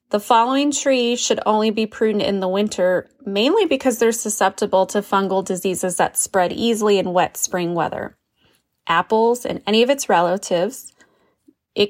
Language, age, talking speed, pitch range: English, 20-39, 155 wpm, 185-240 Hz